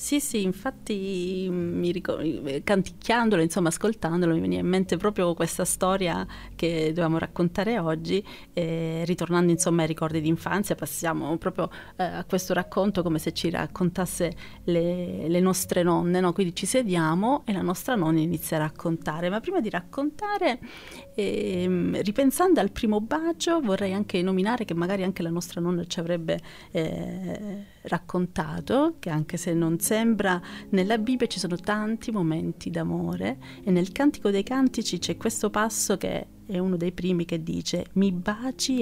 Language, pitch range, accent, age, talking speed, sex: Italian, 170-205 Hz, native, 30-49, 155 wpm, female